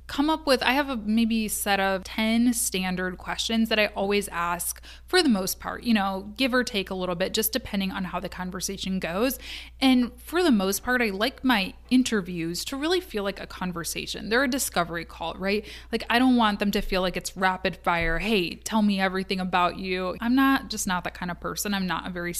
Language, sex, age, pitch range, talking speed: English, female, 20-39, 185-240 Hz, 225 wpm